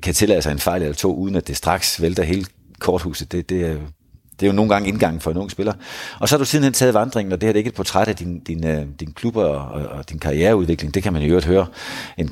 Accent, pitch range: native, 75-100 Hz